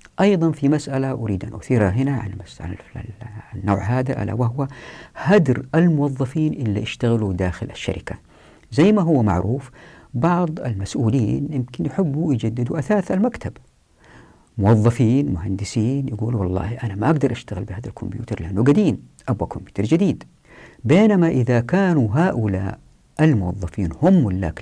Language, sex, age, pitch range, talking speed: Arabic, female, 50-69, 105-150 Hz, 125 wpm